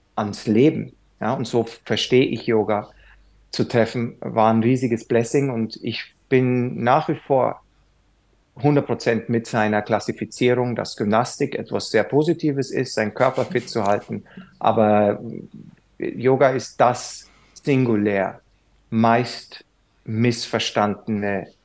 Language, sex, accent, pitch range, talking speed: German, male, German, 105-125 Hz, 115 wpm